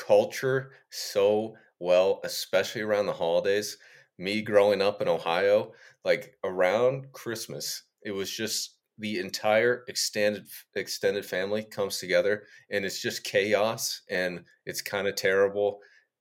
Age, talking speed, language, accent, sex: 30-49, 125 wpm, English, American, male